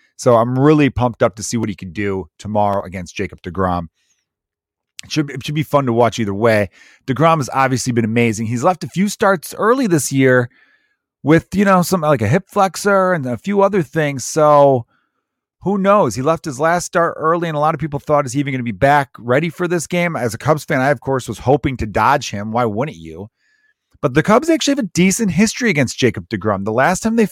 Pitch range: 110-160 Hz